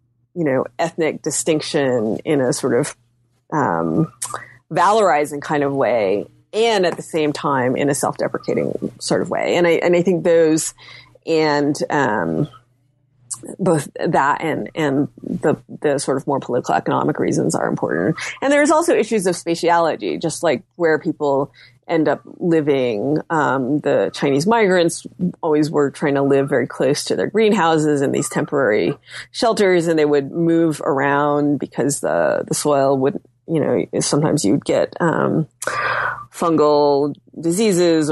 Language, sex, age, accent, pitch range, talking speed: English, female, 30-49, American, 135-170 Hz, 150 wpm